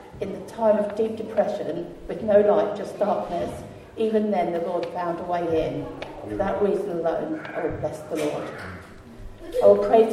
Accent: British